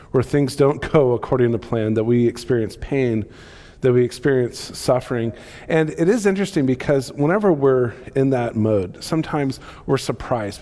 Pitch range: 115-145 Hz